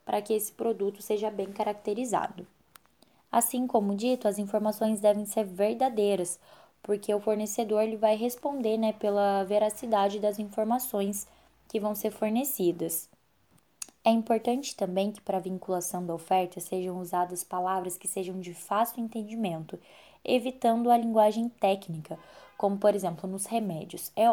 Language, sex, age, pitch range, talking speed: Portuguese, female, 10-29, 190-230 Hz, 140 wpm